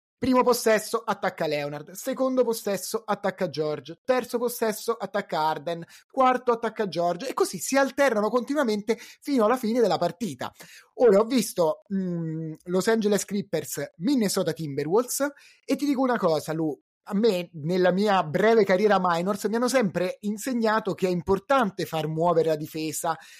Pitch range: 165-225 Hz